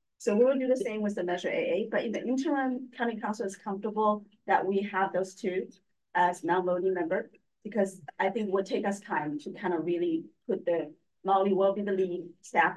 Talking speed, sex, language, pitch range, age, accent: 215 wpm, female, English, 160-195 Hz, 40-59, American